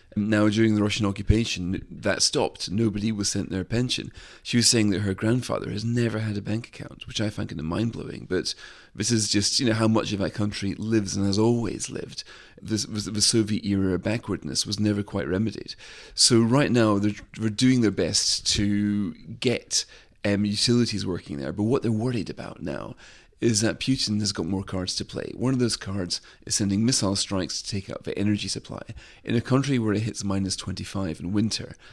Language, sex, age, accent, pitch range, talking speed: English, male, 40-59, British, 95-110 Hz, 205 wpm